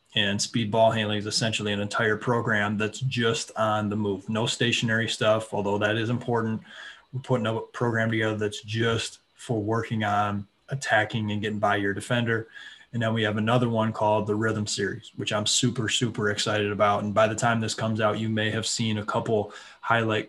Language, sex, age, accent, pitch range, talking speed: English, male, 20-39, American, 105-115 Hz, 200 wpm